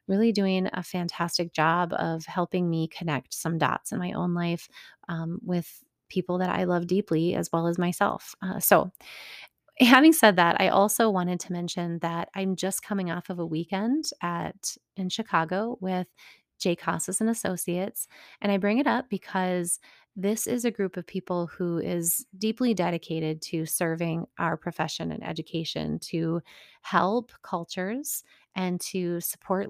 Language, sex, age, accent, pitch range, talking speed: English, female, 30-49, American, 170-200 Hz, 160 wpm